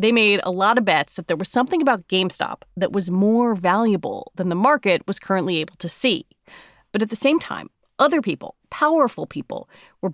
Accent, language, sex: American, English, female